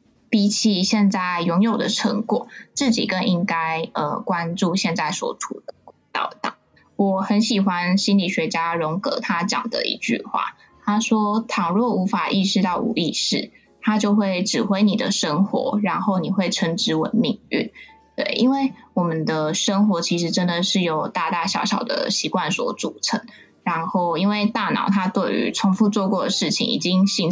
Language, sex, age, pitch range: Chinese, female, 10-29, 180-225 Hz